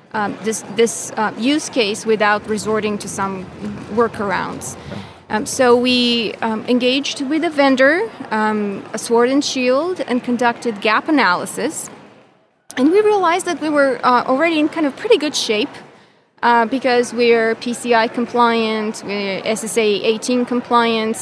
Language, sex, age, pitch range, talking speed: English, female, 20-39, 215-255 Hz, 145 wpm